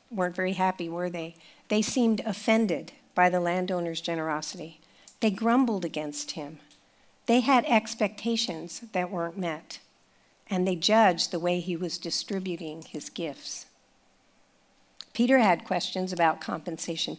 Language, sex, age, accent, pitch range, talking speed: English, female, 50-69, American, 180-230 Hz, 130 wpm